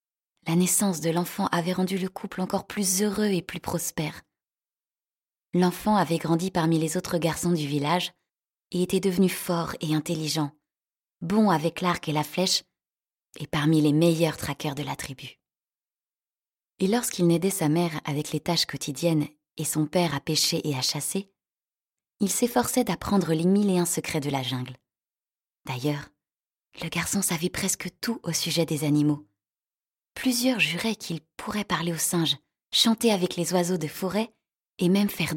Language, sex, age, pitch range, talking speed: French, female, 20-39, 150-190 Hz, 165 wpm